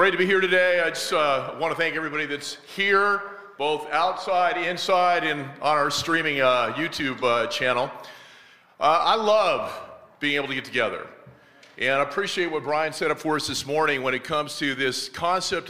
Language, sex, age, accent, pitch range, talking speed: English, male, 40-59, American, 140-175 Hz, 185 wpm